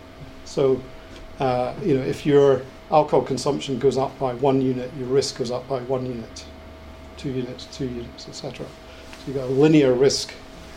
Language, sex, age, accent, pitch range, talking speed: English, male, 40-59, British, 125-145 Hz, 180 wpm